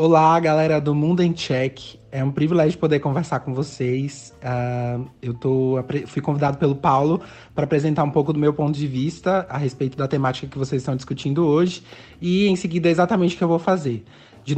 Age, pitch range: 20-39, 135-170 Hz